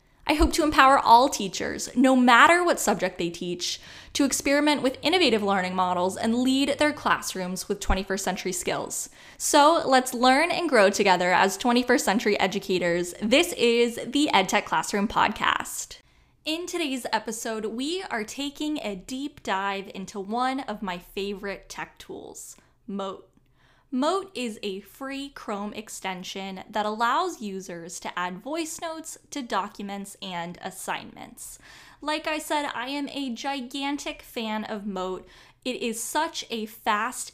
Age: 10-29